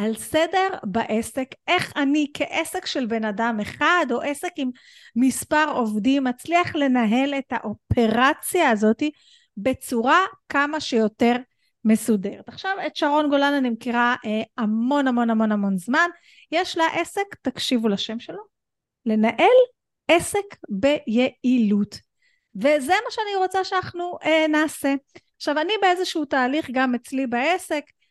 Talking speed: 125 wpm